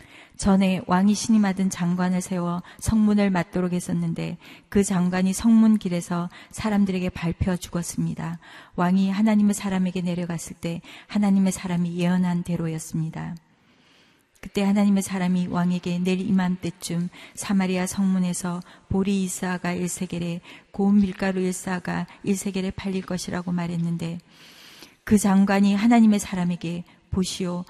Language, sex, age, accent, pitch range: Korean, female, 40-59, native, 175-195 Hz